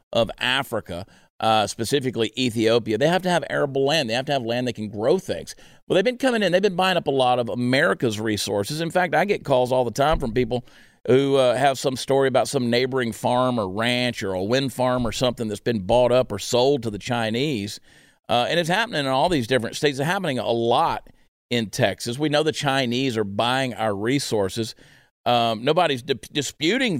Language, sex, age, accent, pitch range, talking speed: English, male, 50-69, American, 120-170 Hz, 215 wpm